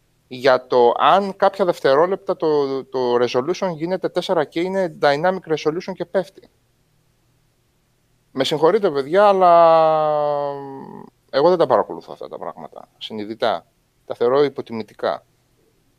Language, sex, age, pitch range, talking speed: Greek, male, 30-49, 120-175 Hz, 115 wpm